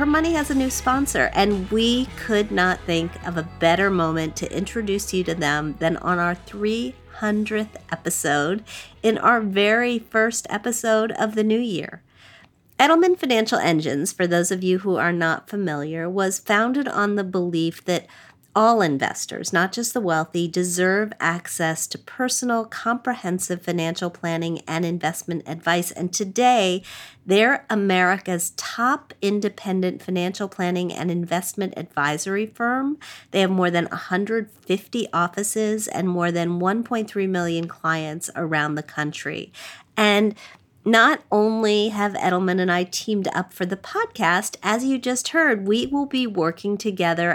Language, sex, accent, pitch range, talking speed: English, female, American, 170-220 Hz, 145 wpm